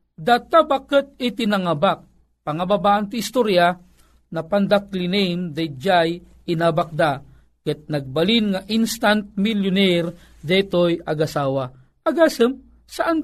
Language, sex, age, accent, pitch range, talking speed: Filipino, male, 40-59, native, 170-225 Hz, 90 wpm